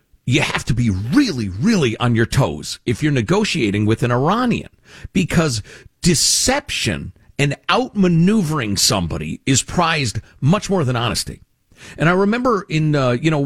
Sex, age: male, 50-69